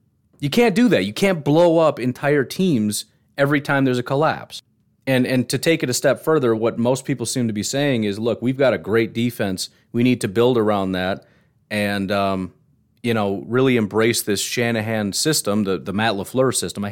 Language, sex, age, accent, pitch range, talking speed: English, male, 30-49, American, 105-125 Hz, 205 wpm